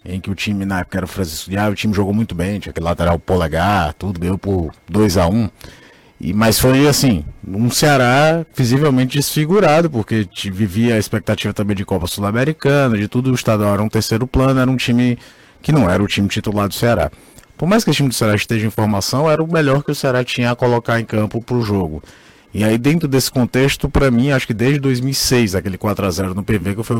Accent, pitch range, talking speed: Brazilian, 100-120 Hz, 220 wpm